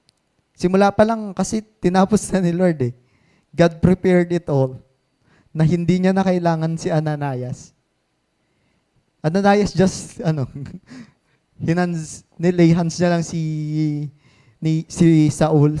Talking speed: 115 wpm